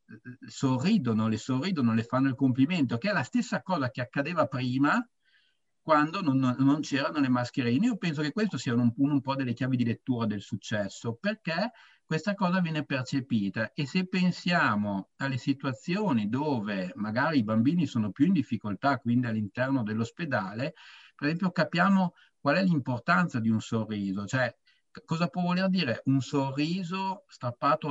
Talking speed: 160 wpm